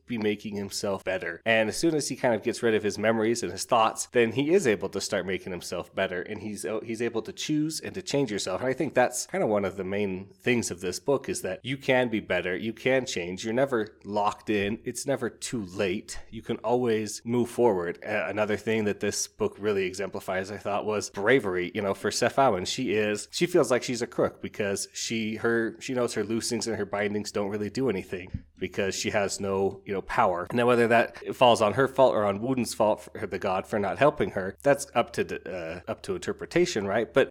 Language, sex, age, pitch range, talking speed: English, male, 30-49, 100-125 Hz, 235 wpm